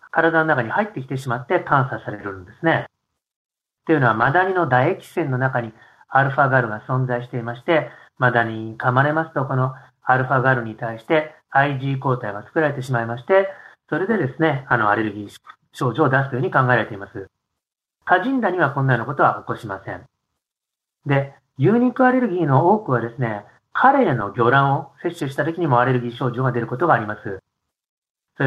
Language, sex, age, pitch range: Japanese, male, 40-59, 120-155 Hz